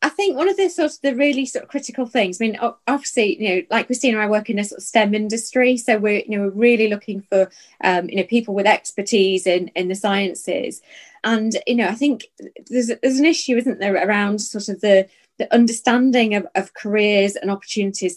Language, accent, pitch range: English, British, 190-230 Hz